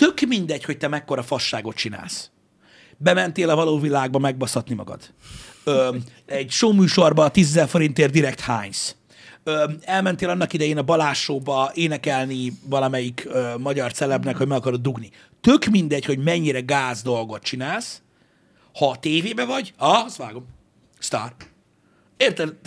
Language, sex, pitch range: Hungarian, male, 140-200 Hz